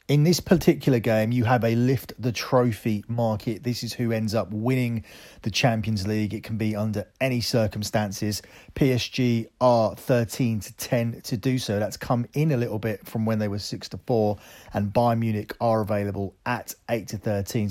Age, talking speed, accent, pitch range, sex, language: 30-49, 190 wpm, British, 105-125 Hz, male, English